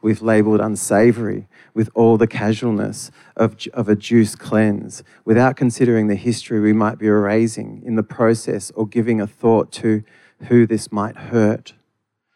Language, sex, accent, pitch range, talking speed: English, male, Australian, 105-120 Hz, 155 wpm